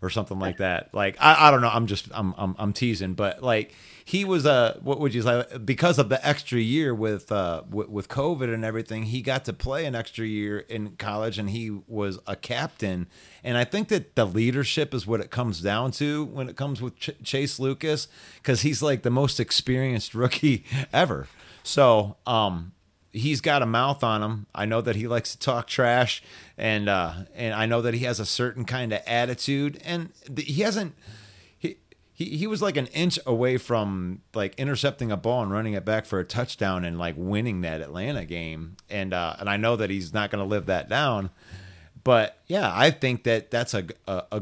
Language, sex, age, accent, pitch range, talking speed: English, male, 30-49, American, 105-140 Hz, 210 wpm